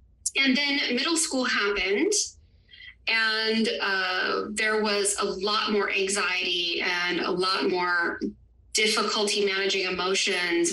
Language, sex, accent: English, female, American